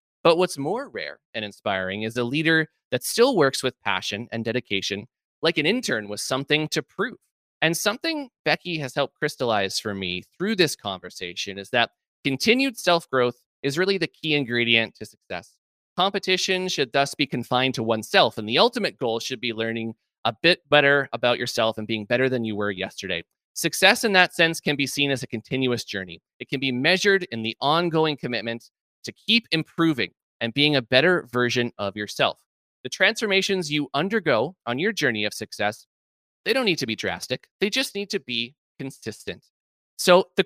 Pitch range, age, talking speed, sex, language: 110-165 Hz, 20-39, 180 wpm, male, English